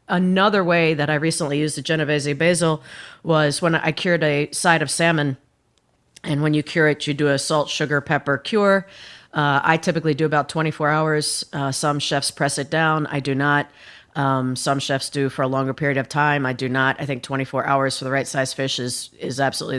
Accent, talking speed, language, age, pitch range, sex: American, 210 wpm, English, 40-59, 135-155 Hz, female